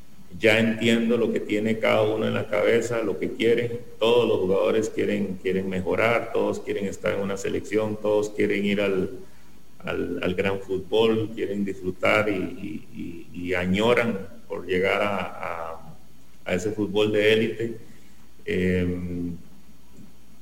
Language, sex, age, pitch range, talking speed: English, male, 40-59, 100-120 Hz, 145 wpm